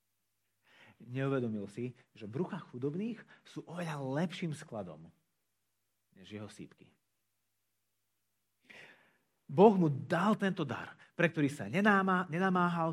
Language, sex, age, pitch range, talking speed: Slovak, male, 40-59, 125-190 Hz, 95 wpm